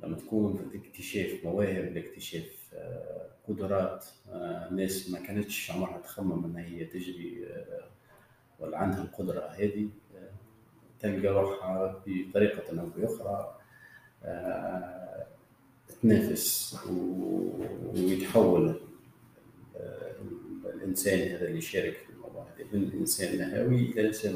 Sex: male